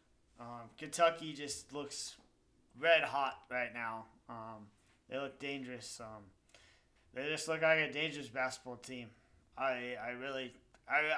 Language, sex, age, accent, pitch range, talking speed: English, male, 30-49, American, 120-150 Hz, 135 wpm